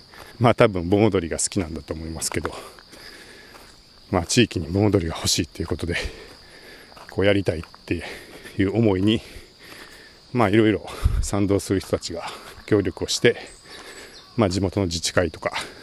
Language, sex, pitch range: Japanese, male, 90-110 Hz